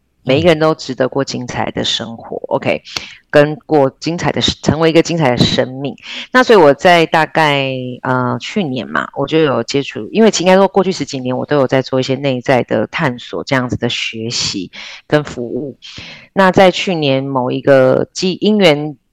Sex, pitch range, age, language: female, 125-160 Hz, 30-49, Chinese